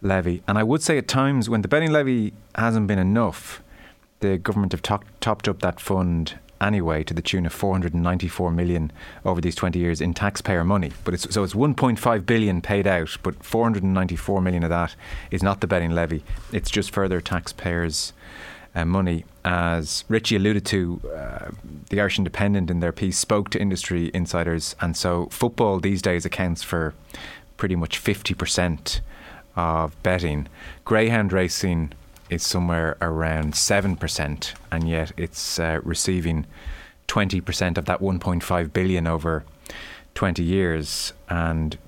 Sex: male